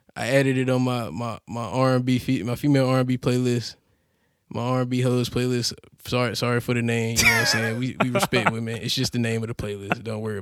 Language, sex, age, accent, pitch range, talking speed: English, male, 10-29, American, 120-145 Hz, 260 wpm